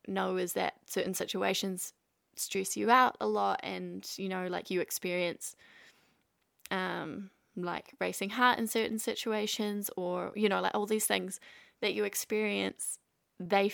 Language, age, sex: English, 20-39, female